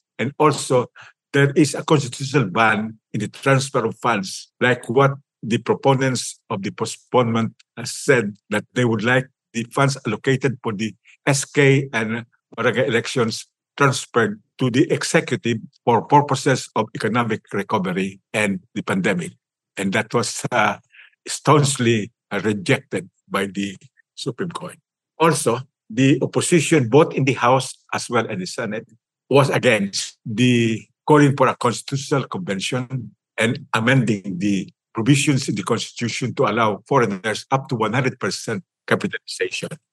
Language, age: Filipino, 50-69